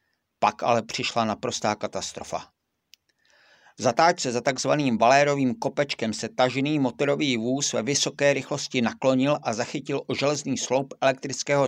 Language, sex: Czech, male